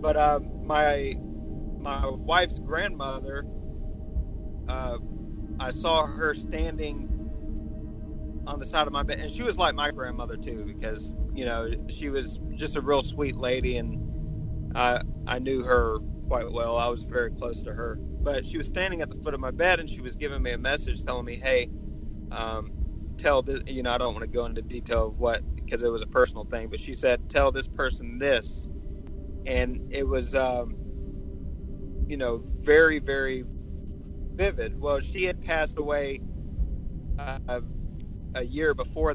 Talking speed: 170 wpm